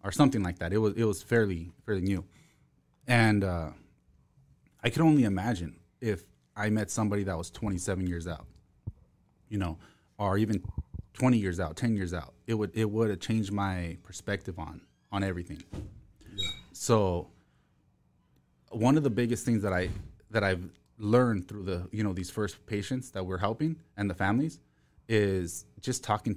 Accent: American